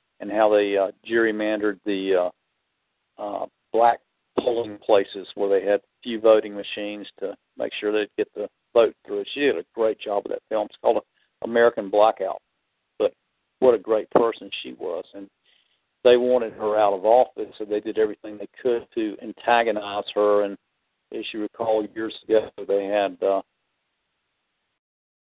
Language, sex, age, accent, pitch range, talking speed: English, male, 50-69, American, 105-125 Hz, 170 wpm